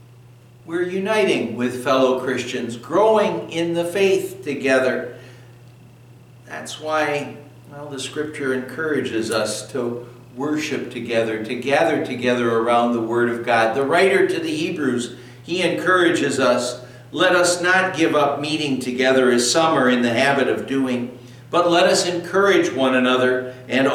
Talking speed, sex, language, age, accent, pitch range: 145 wpm, male, English, 60-79, American, 120-135 Hz